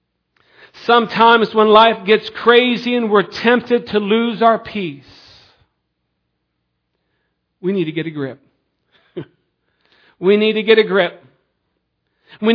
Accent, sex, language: American, male, English